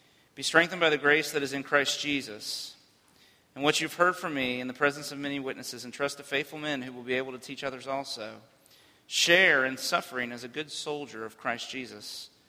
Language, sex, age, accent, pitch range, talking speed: English, male, 40-59, American, 120-145 Hz, 215 wpm